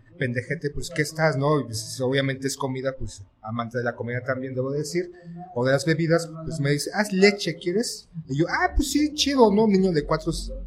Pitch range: 130-160 Hz